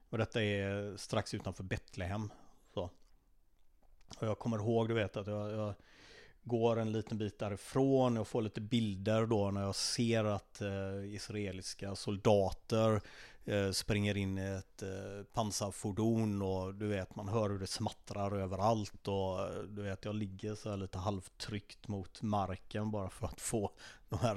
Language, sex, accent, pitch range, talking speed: Swedish, male, native, 100-115 Hz, 165 wpm